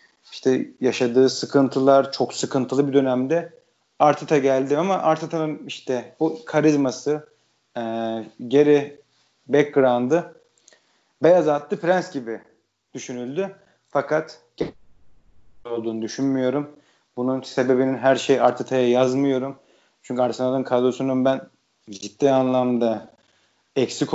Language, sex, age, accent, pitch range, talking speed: Turkish, male, 30-49, native, 125-150 Hz, 95 wpm